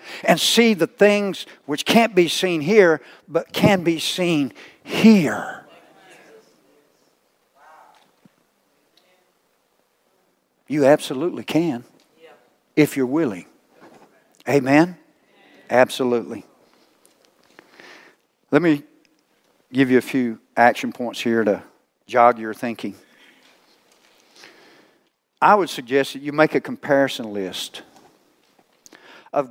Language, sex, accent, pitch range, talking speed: English, male, American, 120-150 Hz, 90 wpm